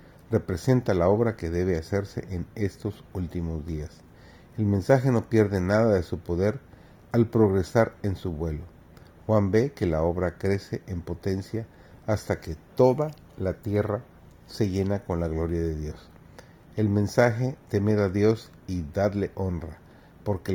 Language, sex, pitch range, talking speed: Spanish, male, 85-110 Hz, 150 wpm